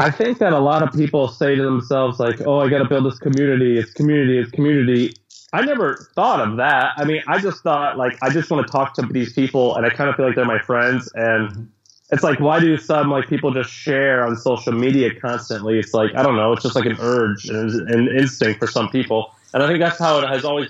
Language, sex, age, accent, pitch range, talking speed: English, male, 20-39, American, 115-135 Hz, 255 wpm